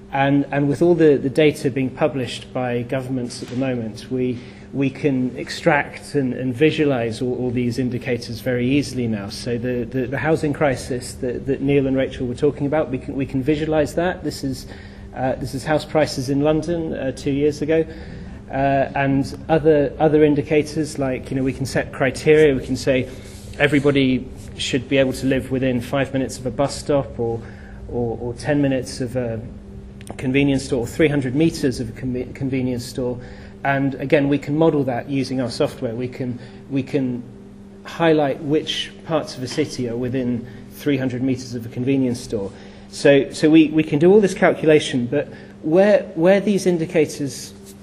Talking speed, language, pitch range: 185 wpm, English, 125-150 Hz